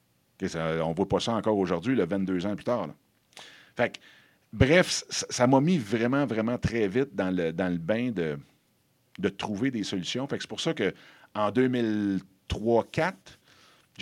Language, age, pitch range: French, 50-69, 95-125 Hz